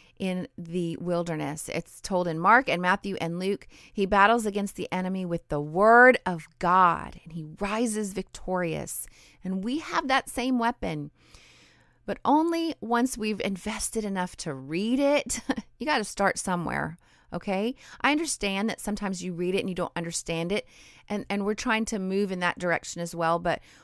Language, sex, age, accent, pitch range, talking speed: English, female, 30-49, American, 175-225 Hz, 175 wpm